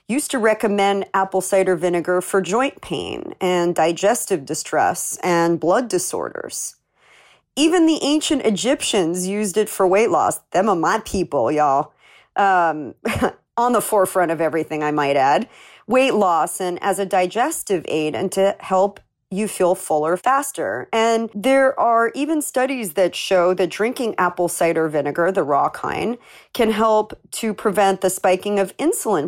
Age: 40-59